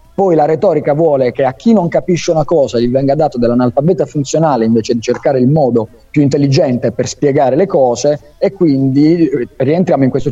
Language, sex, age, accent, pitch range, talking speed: Italian, male, 30-49, native, 120-155 Hz, 185 wpm